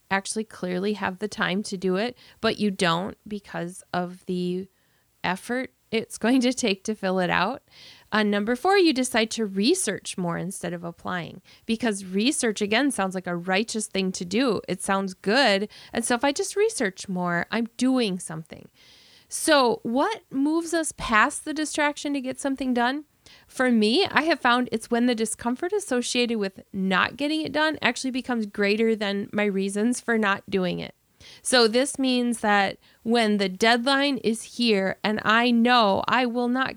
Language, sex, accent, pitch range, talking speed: English, female, American, 200-250 Hz, 175 wpm